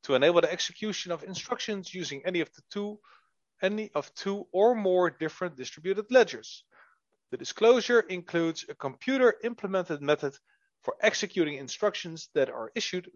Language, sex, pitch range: English, male, 145-210 Hz